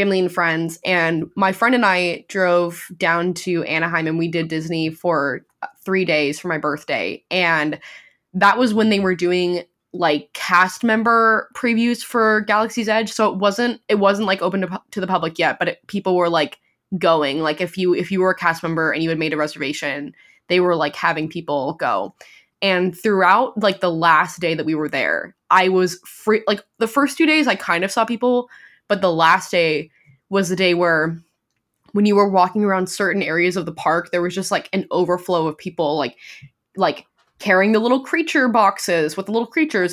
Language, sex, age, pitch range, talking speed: English, female, 10-29, 165-210 Hz, 200 wpm